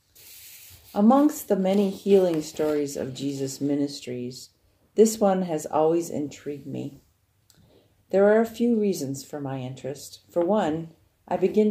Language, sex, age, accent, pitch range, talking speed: English, female, 50-69, American, 130-170 Hz, 135 wpm